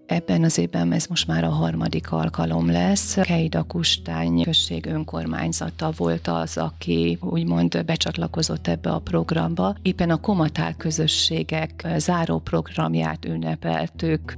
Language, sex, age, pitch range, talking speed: Hungarian, female, 30-49, 85-110 Hz, 115 wpm